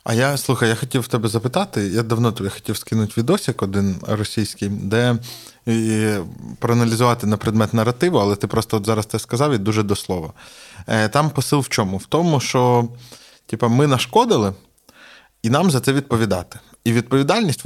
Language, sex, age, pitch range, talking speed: Ukrainian, male, 20-39, 105-125 Hz, 175 wpm